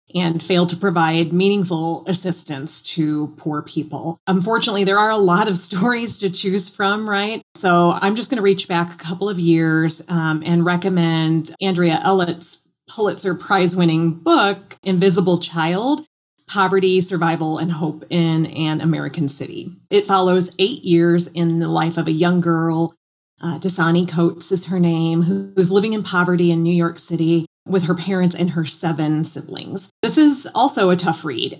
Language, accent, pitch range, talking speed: English, American, 165-190 Hz, 165 wpm